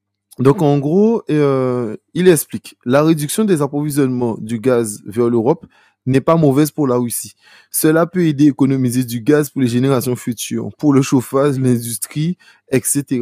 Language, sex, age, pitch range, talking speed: French, male, 20-39, 120-150 Hz, 165 wpm